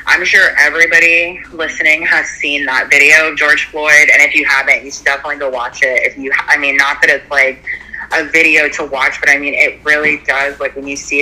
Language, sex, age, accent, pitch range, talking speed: English, female, 20-39, American, 140-165 Hz, 235 wpm